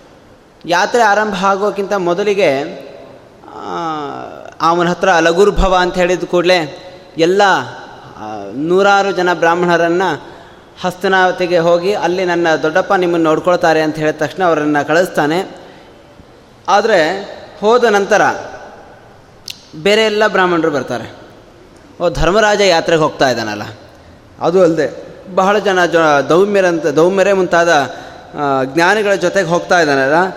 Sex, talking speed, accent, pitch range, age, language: male, 95 wpm, native, 165-205 Hz, 30-49, Kannada